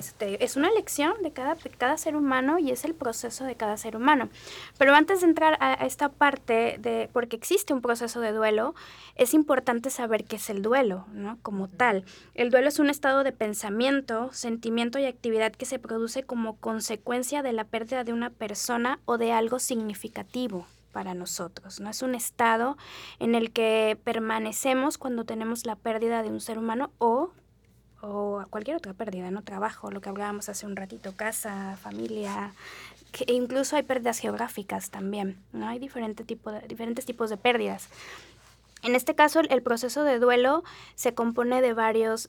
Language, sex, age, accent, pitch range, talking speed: Spanish, female, 20-39, Mexican, 215-255 Hz, 175 wpm